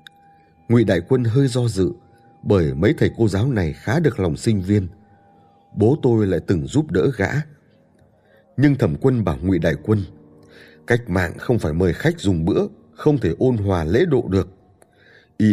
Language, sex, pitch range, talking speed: Vietnamese, male, 85-125 Hz, 180 wpm